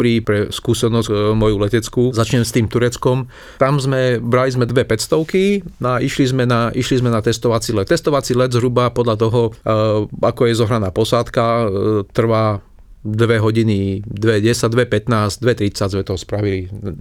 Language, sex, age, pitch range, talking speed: Slovak, male, 40-59, 105-125 Hz, 150 wpm